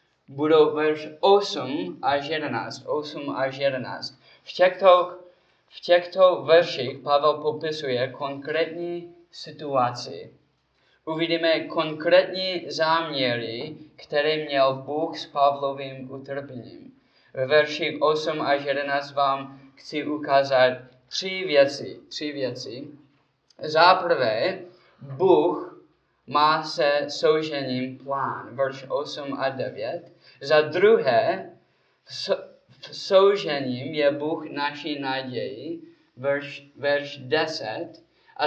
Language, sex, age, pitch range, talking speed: Czech, male, 20-39, 130-160 Hz, 85 wpm